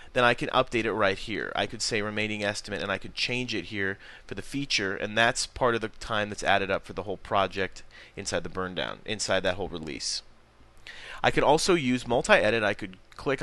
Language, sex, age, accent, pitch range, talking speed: English, male, 30-49, American, 105-125 Hz, 225 wpm